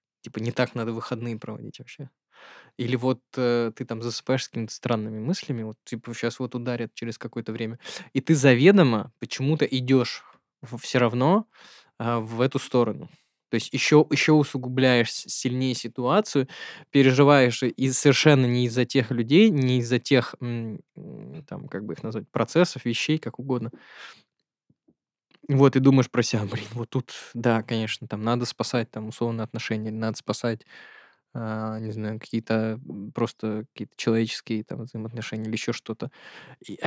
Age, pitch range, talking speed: 20-39, 115-135 Hz, 155 wpm